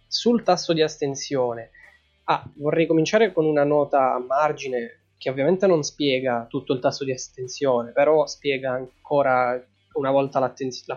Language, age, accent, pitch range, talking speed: Italian, 20-39, native, 125-150 Hz, 150 wpm